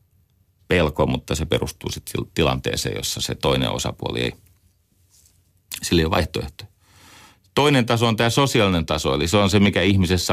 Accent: native